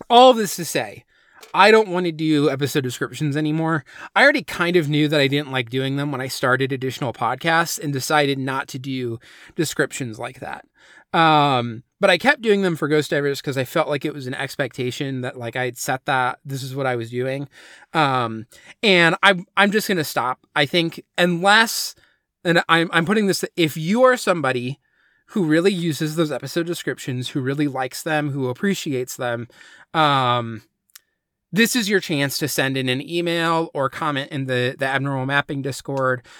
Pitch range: 130-175 Hz